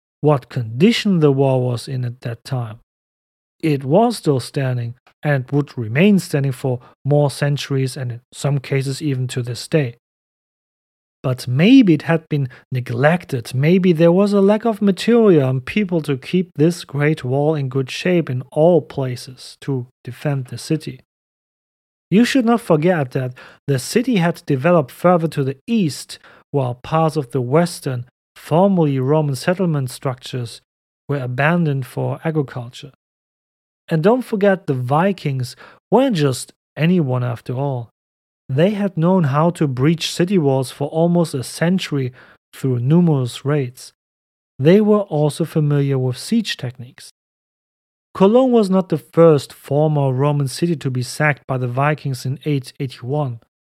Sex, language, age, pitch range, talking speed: male, English, 40-59, 130-170 Hz, 145 wpm